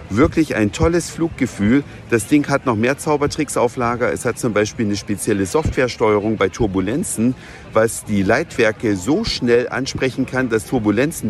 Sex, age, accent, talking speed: male, 50-69, German, 160 wpm